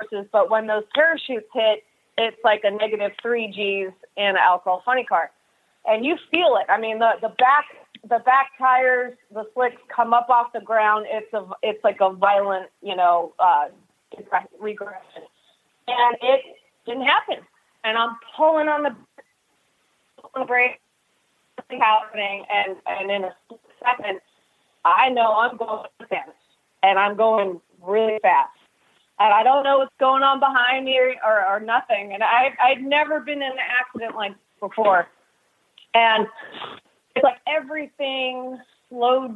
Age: 30-49